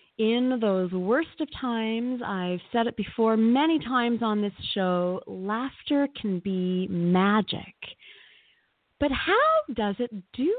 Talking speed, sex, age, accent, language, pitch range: 130 wpm, female, 30-49, American, English, 180-265 Hz